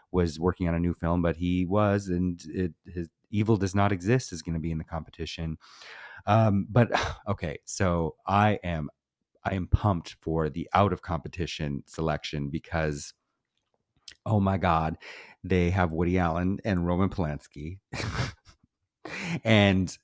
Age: 30-49